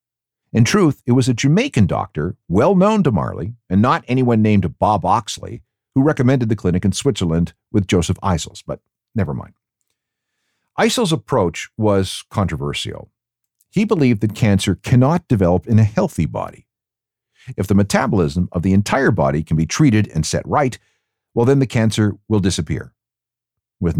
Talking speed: 160 wpm